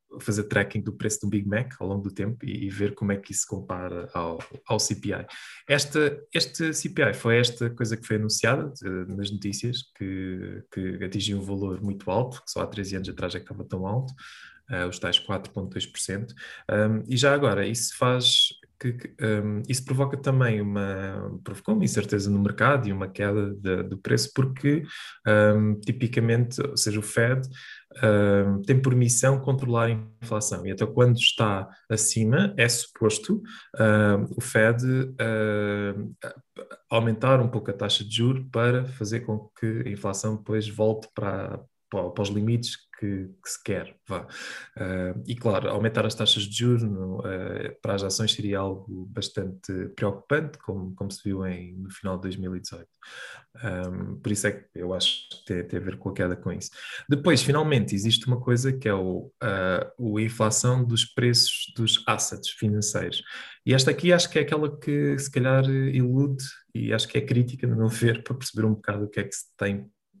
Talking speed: 185 wpm